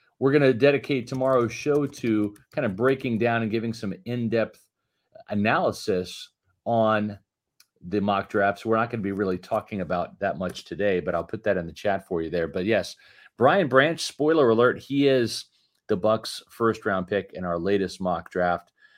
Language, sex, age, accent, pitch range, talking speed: English, male, 40-59, American, 100-135 Hz, 185 wpm